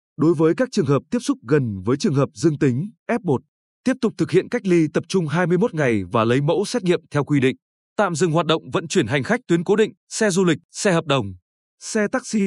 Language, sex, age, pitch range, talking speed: Vietnamese, male, 20-39, 145-195 Hz, 245 wpm